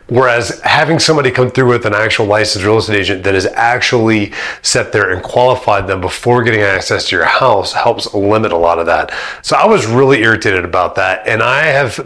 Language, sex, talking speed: English, male, 210 wpm